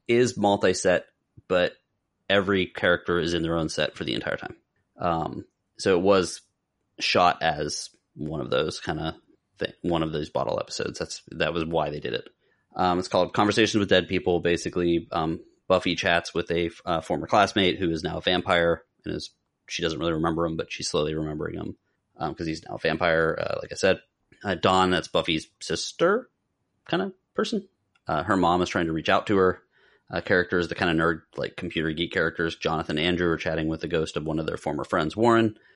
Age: 30-49